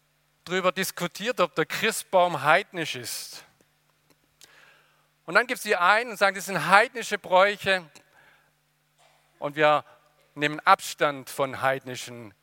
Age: 50-69